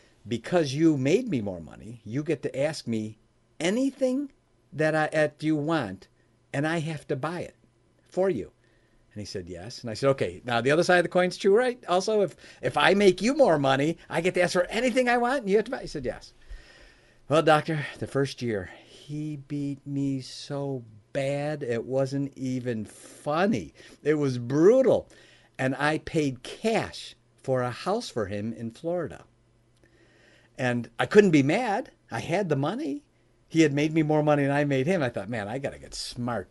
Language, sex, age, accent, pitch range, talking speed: English, male, 50-69, American, 115-160 Hz, 195 wpm